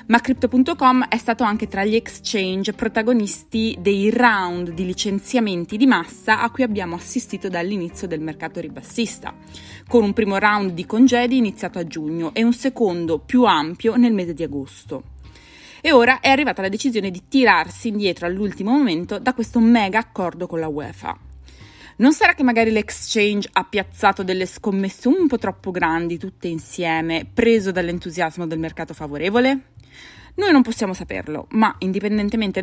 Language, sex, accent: Italian, female, native